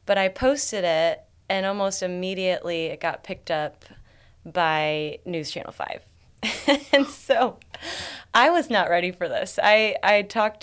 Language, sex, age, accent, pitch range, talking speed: English, female, 20-39, American, 160-210 Hz, 145 wpm